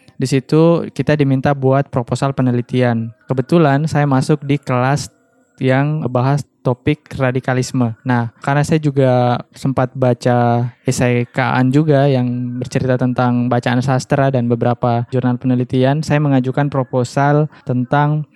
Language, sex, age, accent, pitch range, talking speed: Indonesian, male, 10-29, native, 125-145 Hz, 125 wpm